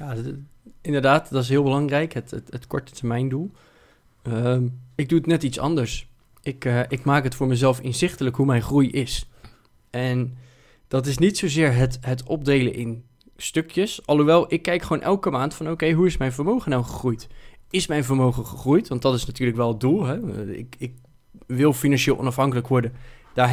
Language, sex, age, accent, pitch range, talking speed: Dutch, male, 20-39, Dutch, 125-155 Hz, 190 wpm